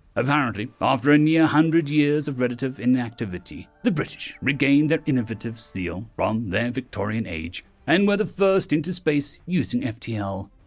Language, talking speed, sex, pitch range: English, 150 wpm, male, 110-150 Hz